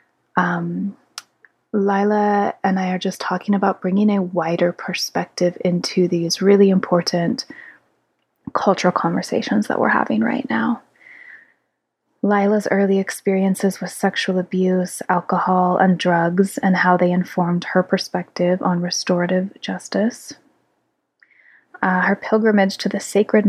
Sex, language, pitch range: female, English, 175-200 Hz